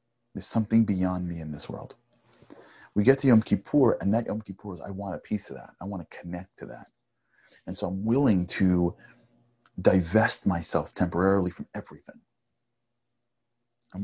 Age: 30-49